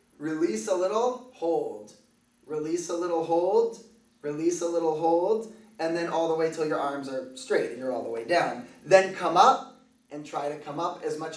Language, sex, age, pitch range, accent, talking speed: English, male, 20-39, 150-185 Hz, American, 200 wpm